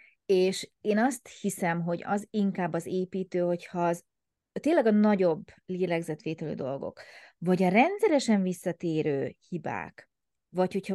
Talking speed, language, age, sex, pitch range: 125 wpm, Hungarian, 30-49, female, 170-220 Hz